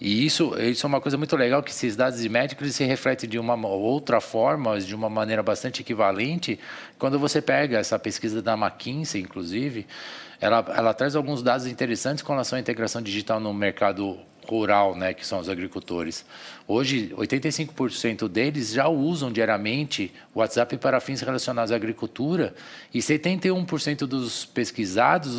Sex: male